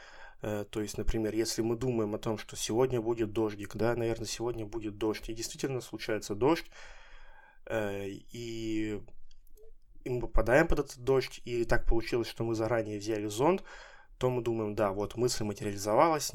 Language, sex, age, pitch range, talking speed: Russian, male, 20-39, 110-130 Hz, 160 wpm